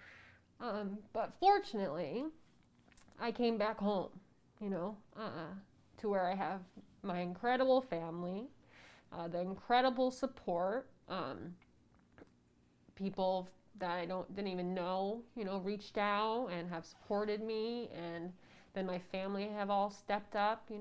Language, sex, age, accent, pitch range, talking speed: English, female, 20-39, American, 180-215 Hz, 135 wpm